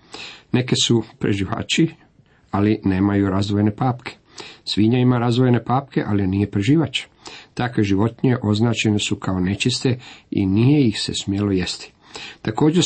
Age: 50-69